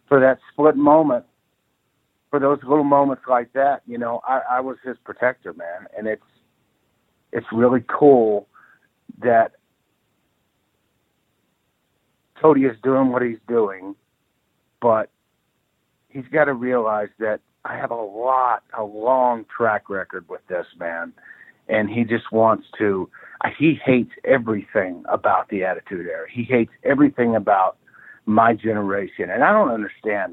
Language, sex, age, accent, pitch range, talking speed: English, male, 50-69, American, 110-145 Hz, 135 wpm